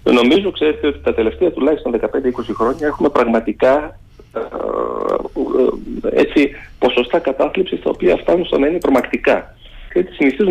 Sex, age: male, 40-59